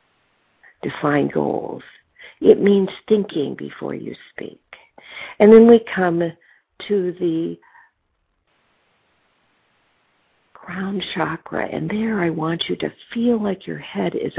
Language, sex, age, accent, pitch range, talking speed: English, female, 50-69, American, 160-215 Hz, 115 wpm